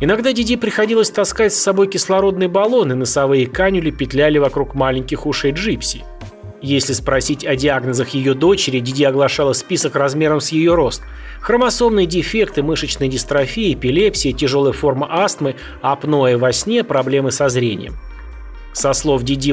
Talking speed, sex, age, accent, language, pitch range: 140 wpm, male, 30-49, native, Russian, 130-180 Hz